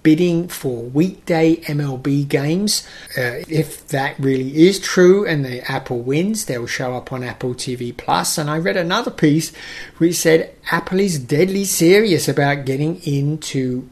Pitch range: 130-165 Hz